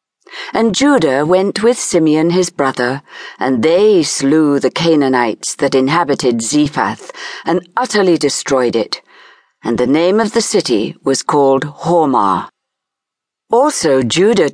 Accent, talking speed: British, 125 wpm